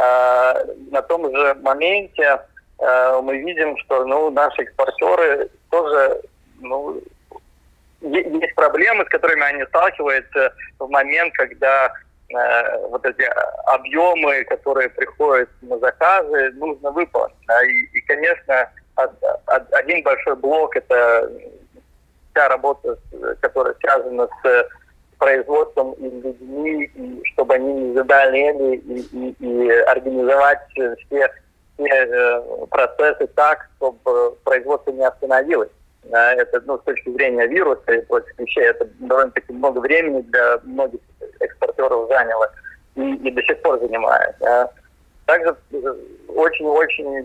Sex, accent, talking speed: male, native, 115 wpm